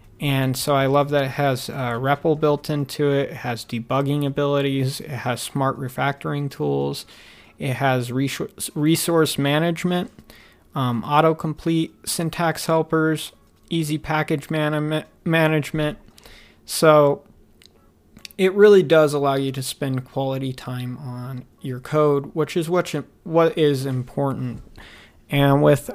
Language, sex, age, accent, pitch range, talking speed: English, male, 30-49, American, 125-155 Hz, 125 wpm